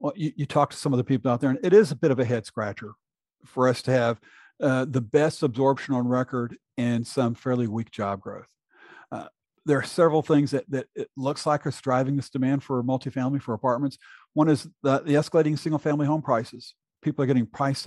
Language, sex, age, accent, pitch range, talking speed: English, male, 50-69, American, 120-140 Hz, 220 wpm